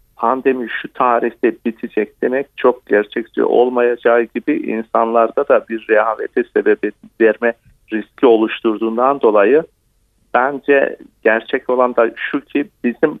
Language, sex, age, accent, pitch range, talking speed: Turkish, male, 50-69, native, 115-140 Hz, 115 wpm